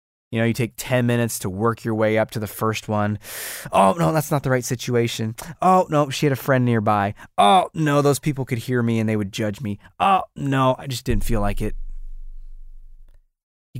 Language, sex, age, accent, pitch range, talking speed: English, male, 20-39, American, 110-135 Hz, 215 wpm